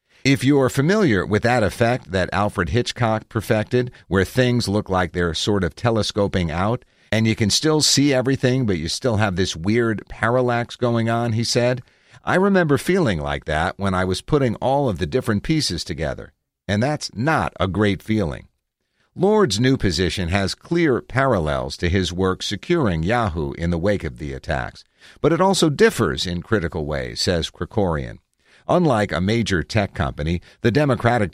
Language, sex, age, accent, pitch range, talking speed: English, male, 50-69, American, 90-125 Hz, 175 wpm